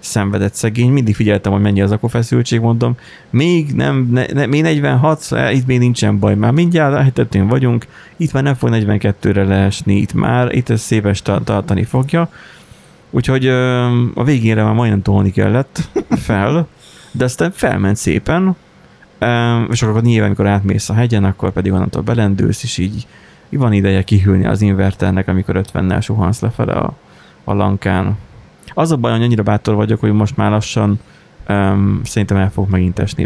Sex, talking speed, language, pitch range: male, 170 wpm, Hungarian, 100-125 Hz